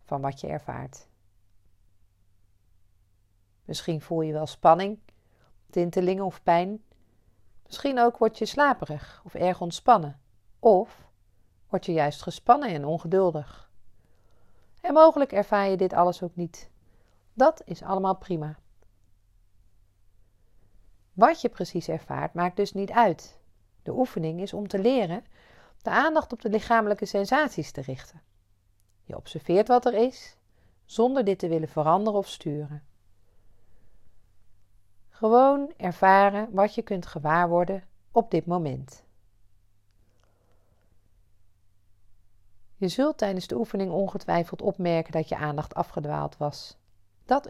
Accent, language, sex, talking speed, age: Dutch, Dutch, female, 120 wpm, 40-59